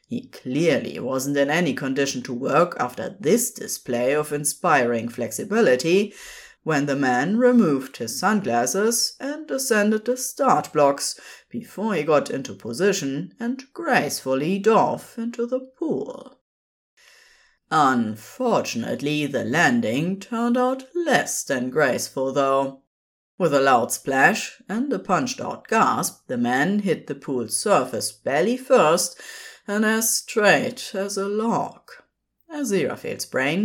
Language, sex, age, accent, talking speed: English, female, 30-49, German, 125 wpm